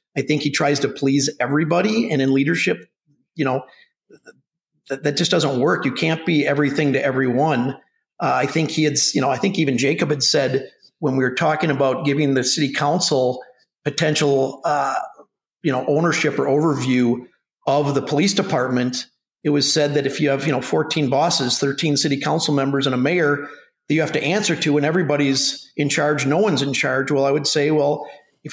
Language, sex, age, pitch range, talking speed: English, male, 50-69, 140-160 Hz, 195 wpm